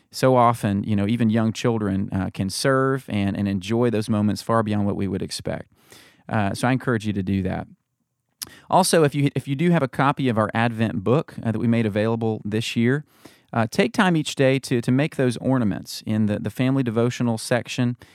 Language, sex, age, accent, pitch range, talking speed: English, male, 30-49, American, 110-130 Hz, 215 wpm